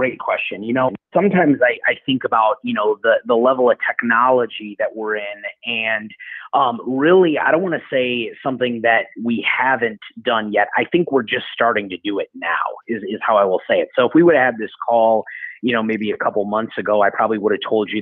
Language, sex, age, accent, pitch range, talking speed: English, male, 30-49, American, 110-125 Hz, 235 wpm